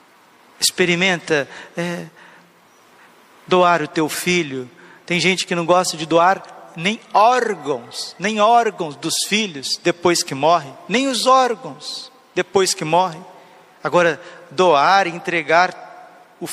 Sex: male